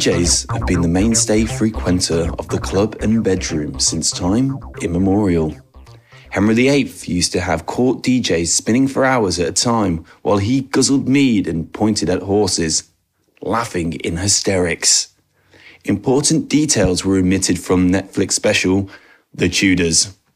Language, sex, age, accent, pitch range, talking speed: English, male, 30-49, British, 90-120 Hz, 140 wpm